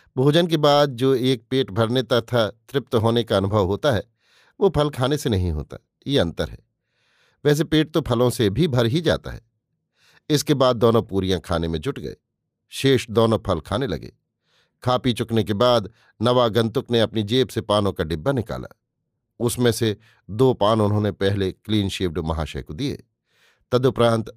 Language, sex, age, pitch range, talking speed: Hindi, male, 50-69, 105-130 Hz, 175 wpm